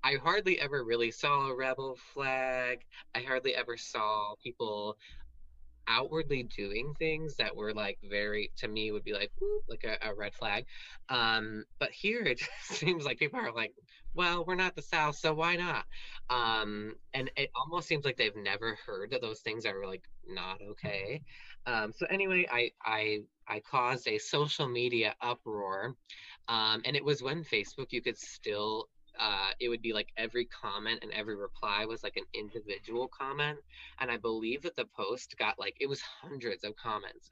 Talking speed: 180 wpm